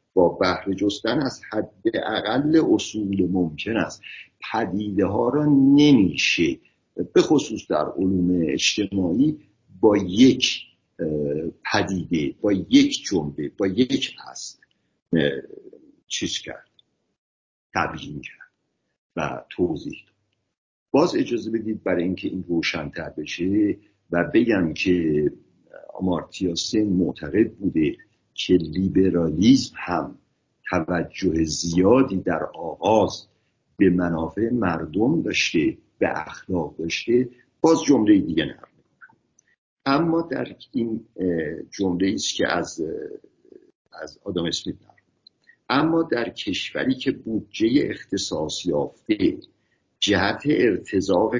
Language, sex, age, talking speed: Persian, male, 50-69, 100 wpm